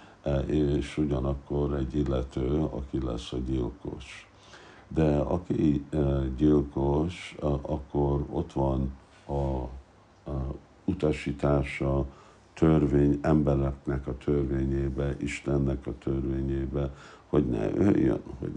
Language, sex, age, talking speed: Hungarian, male, 60-79, 90 wpm